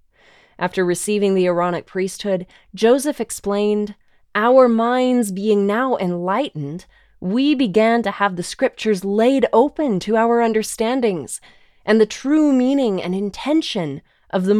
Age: 20-39